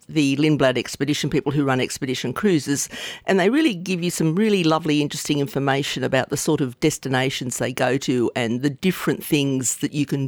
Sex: female